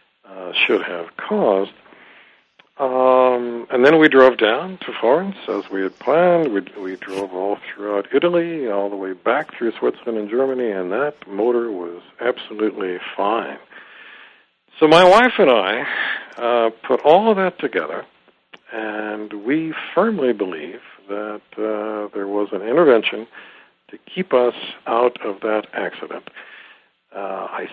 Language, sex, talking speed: English, male, 140 wpm